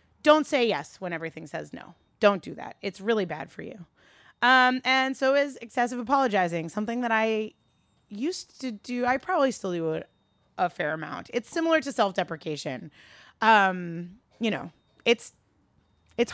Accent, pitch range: American, 180-240 Hz